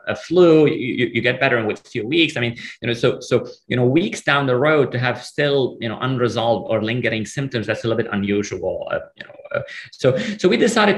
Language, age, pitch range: English, 30-49, 115-145 Hz